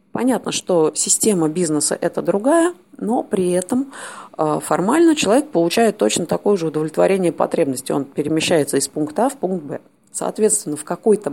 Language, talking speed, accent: Russian, 150 wpm, native